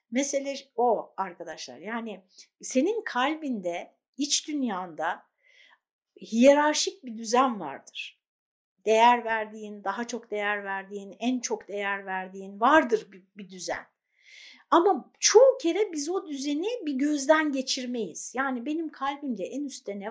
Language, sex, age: Turkish, female, 60-79